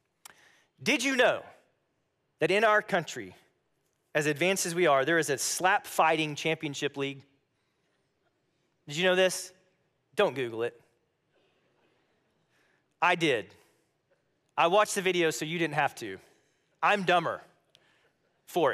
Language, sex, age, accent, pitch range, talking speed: English, male, 30-49, American, 165-225 Hz, 130 wpm